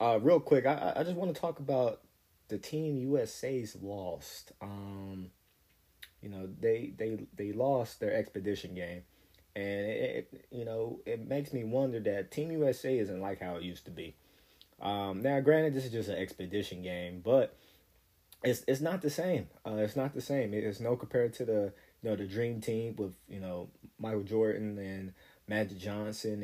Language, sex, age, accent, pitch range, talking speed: English, male, 20-39, American, 95-120 Hz, 185 wpm